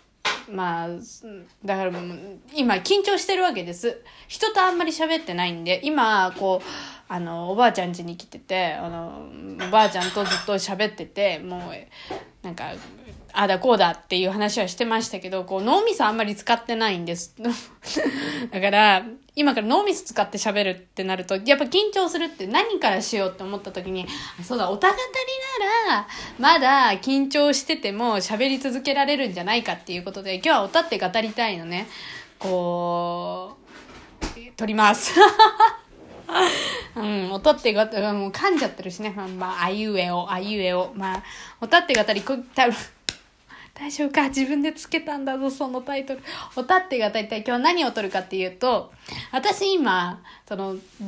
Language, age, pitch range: Japanese, 20-39, 190-285 Hz